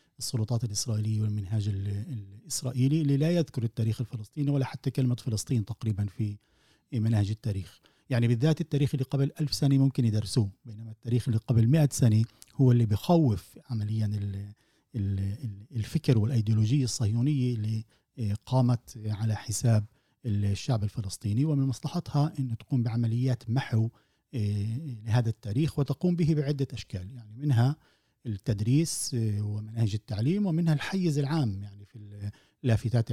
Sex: male